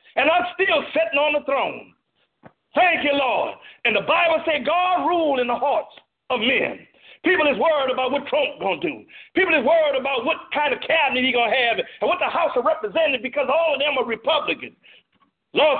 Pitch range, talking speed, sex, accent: 265-315 Hz, 215 wpm, male, American